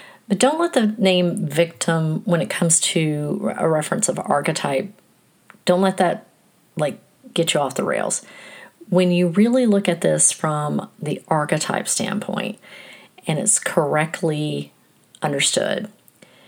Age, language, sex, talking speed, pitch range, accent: 40-59, English, female, 135 wpm, 155-185 Hz, American